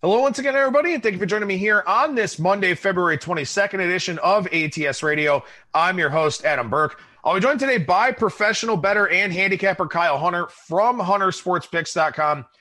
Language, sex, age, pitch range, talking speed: English, male, 30-49, 160-210 Hz, 180 wpm